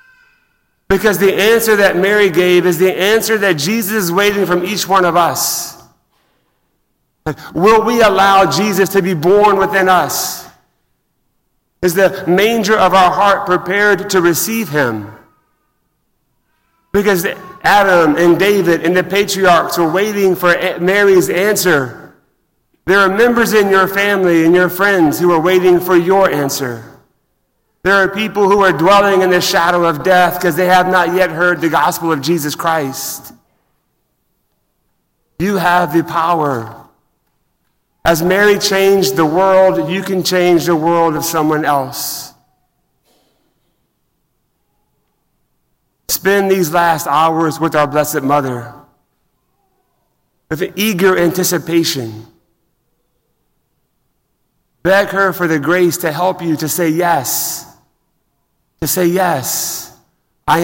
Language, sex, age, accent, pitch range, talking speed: English, male, 40-59, American, 165-195 Hz, 130 wpm